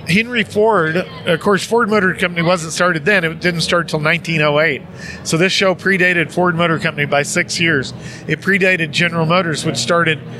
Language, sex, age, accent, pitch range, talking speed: English, male, 40-59, American, 160-190 Hz, 180 wpm